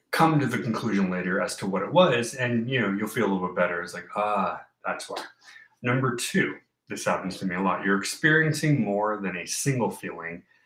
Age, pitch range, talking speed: 30-49, 95-120 Hz, 220 wpm